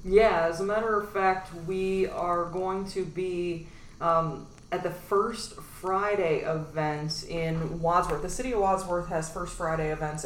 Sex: female